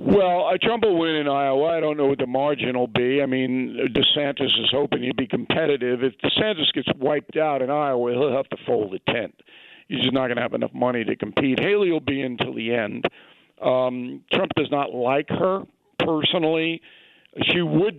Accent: American